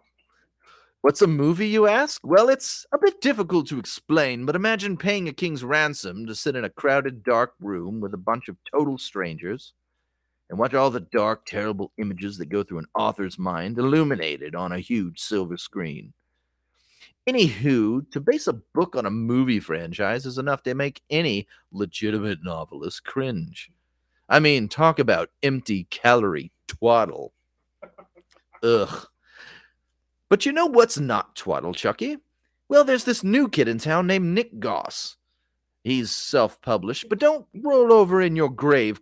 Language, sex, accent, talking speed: English, male, American, 155 wpm